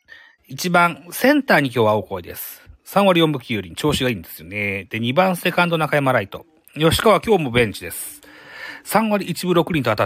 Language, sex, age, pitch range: Japanese, male, 40-59, 115-185 Hz